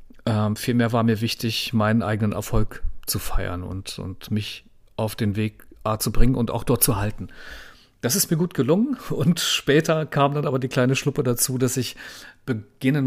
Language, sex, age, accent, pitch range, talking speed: German, male, 40-59, German, 105-125 Hz, 180 wpm